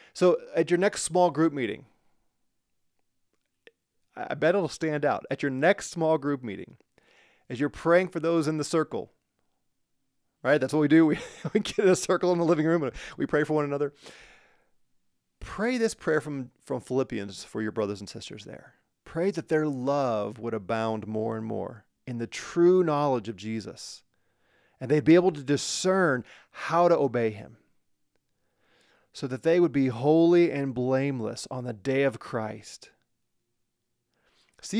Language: English